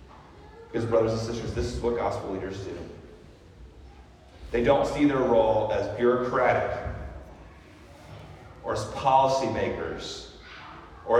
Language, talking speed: English, 120 wpm